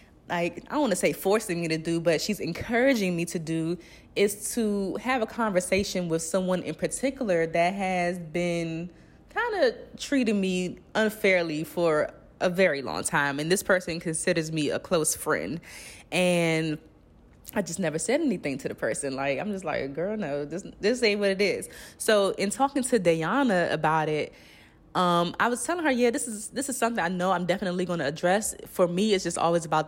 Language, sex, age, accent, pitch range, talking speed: English, female, 20-39, American, 165-205 Hz, 195 wpm